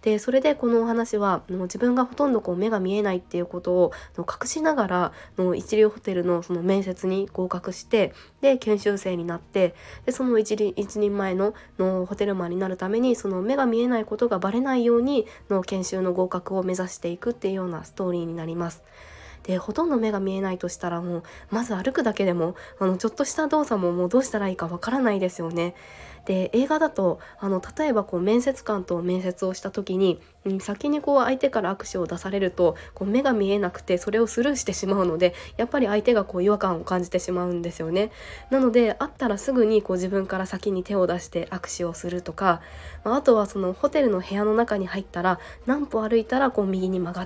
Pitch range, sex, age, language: 180-225 Hz, female, 20-39, Japanese